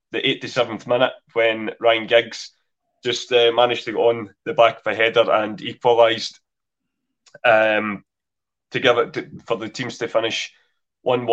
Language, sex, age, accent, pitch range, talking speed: English, male, 20-39, British, 115-125 Hz, 160 wpm